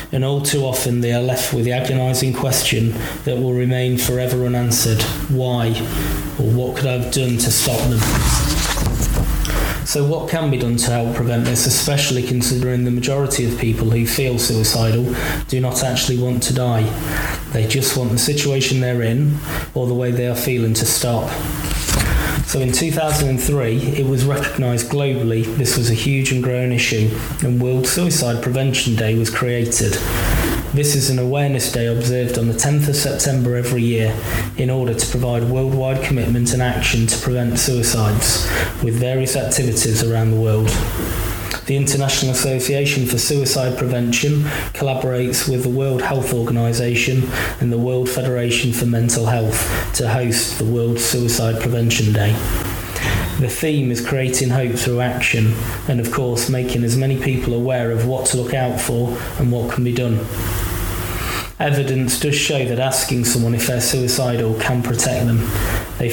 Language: English